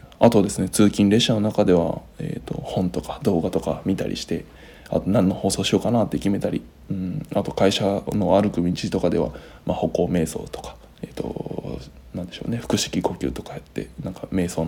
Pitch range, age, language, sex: 90-120 Hz, 20-39, Japanese, male